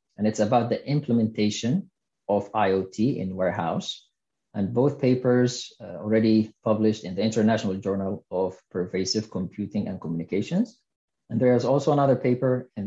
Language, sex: English, male